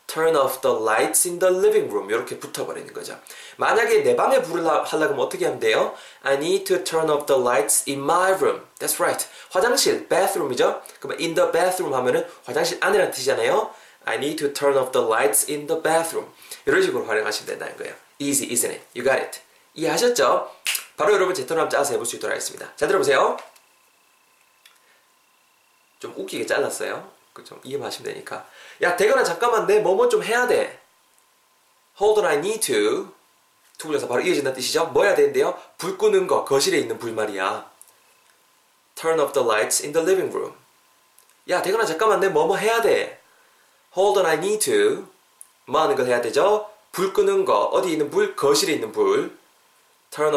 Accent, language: native, Korean